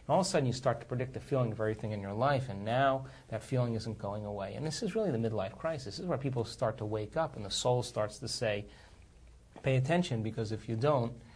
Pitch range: 110-135 Hz